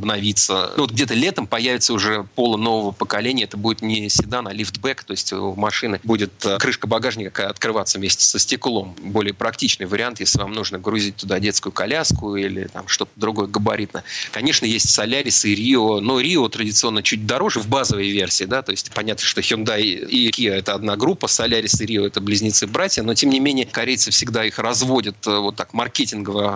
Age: 30-49